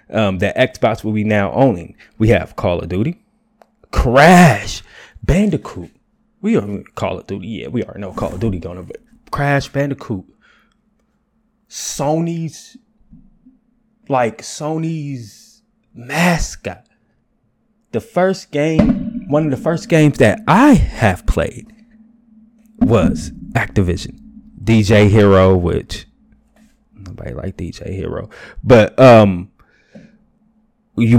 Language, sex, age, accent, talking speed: English, male, 20-39, American, 110 wpm